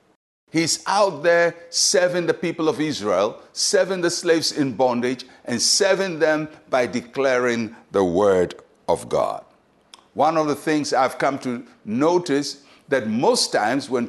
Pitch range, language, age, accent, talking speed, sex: 130-170 Hz, English, 60-79, Nigerian, 145 wpm, male